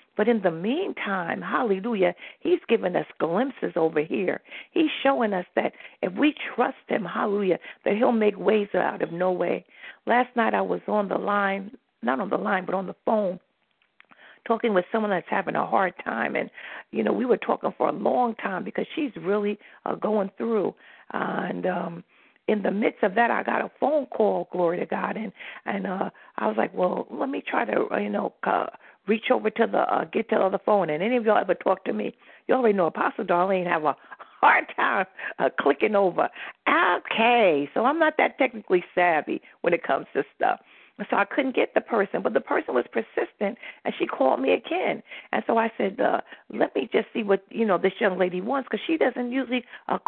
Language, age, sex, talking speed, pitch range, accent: English, 50-69, female, 210 wpm, 190-245 Hz, American